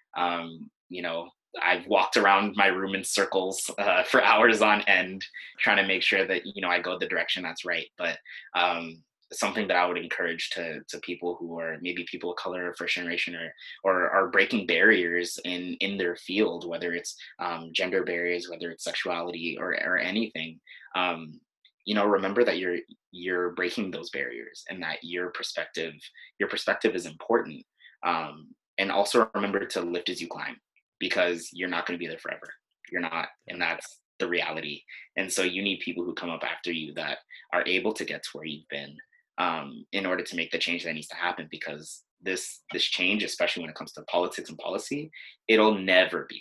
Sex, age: male, 20-39